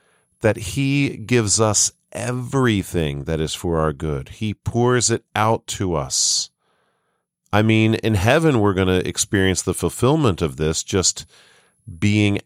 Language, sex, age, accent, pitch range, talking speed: English, male, 40-59, American, 85-110 Hz, 145 wpm